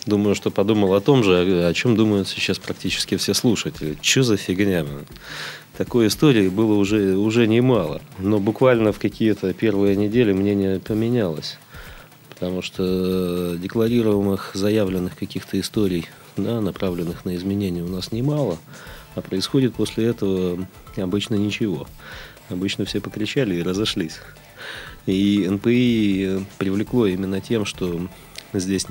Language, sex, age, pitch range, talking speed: Russian, male, 30-49, 90-105 Hz, 125 wpm